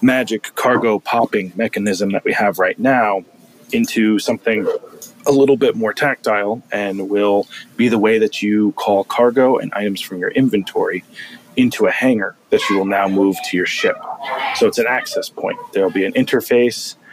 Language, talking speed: English, 180 wpm